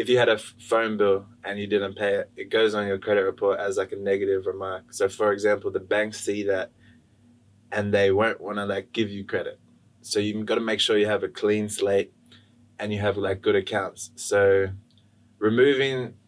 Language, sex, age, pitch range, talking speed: English, male, 20-39, 100-115 Hz, 210 wpm